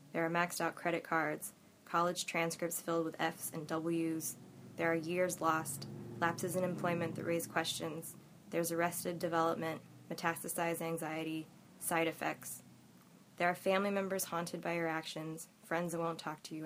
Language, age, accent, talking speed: English, 20-39, American, 160 wpm